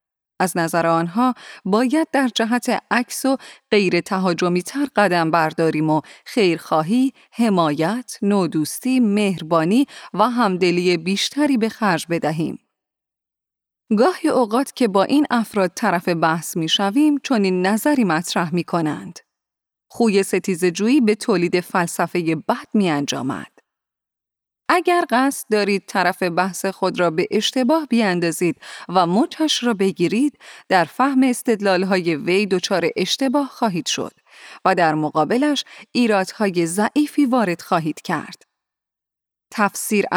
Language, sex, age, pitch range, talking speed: Persian, female, 30-49, 175-250 Hz, 115 wpm